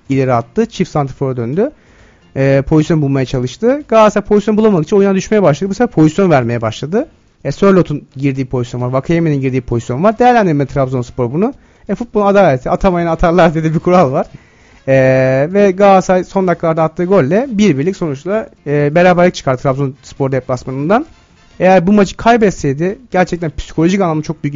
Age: 40-59